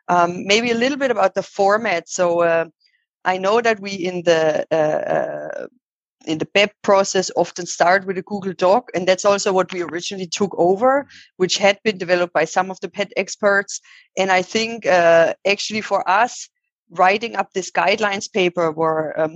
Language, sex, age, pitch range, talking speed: English, female, 20-39, 175-200 Hz, 185 wpm